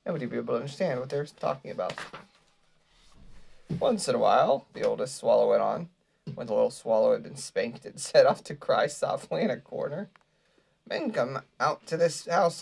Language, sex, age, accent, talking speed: English, male, 30-49, American, 195 wpm